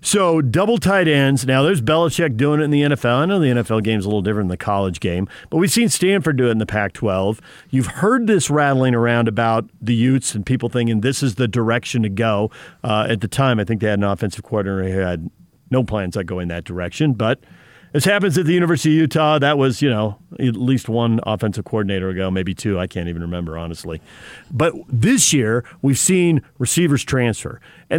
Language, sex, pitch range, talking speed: English, male, 115-150 Hz, 220 wpm